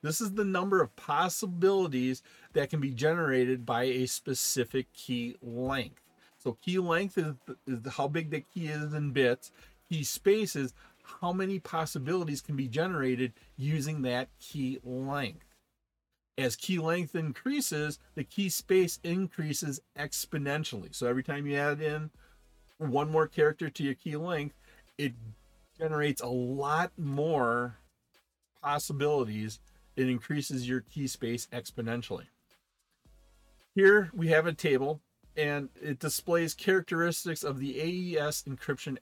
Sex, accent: male, American